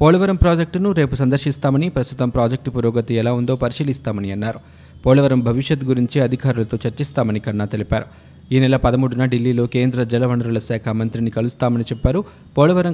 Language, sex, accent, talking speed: Telugu, male, native, 130 wpm